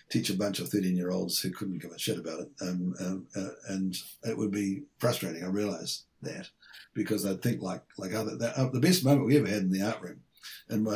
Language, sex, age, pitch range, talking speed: English, male, 60-79, 100-120 Hz, 225 wpm